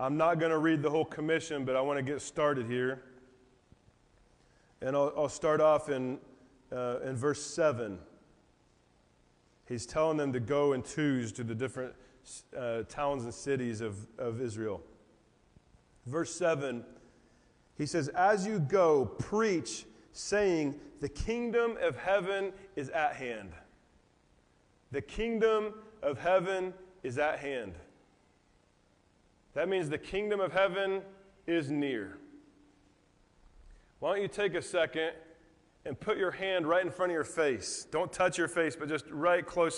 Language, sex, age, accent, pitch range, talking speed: English, male, 30-49, American, 130-175 Hz, 145 wpm